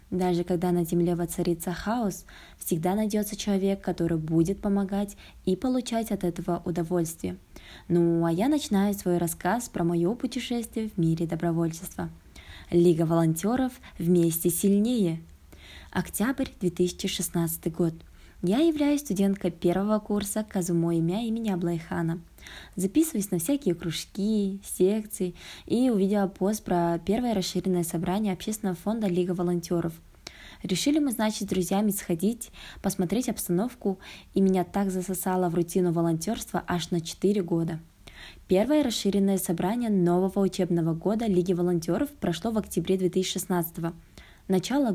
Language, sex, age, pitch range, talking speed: Russian, female, 20-39, 170-210 Hz, 125 wpm